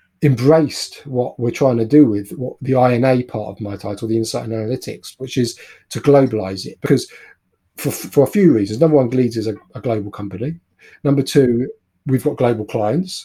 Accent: British